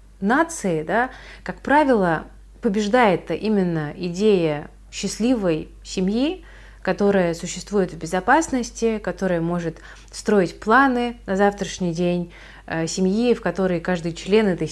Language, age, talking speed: Russian, 30-49, 105 wpm